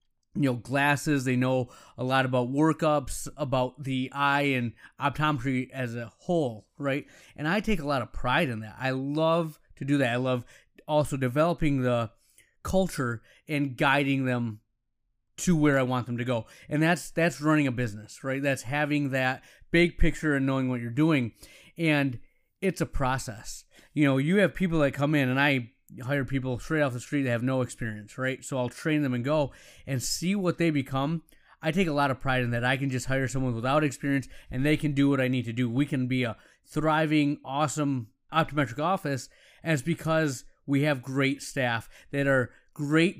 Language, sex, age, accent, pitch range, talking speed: English, male, 30-49, American, 125-155 Hz, 200 wpm